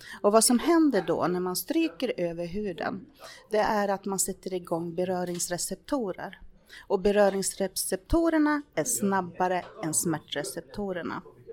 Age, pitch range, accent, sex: 30-49, 170-225 Hz, native, female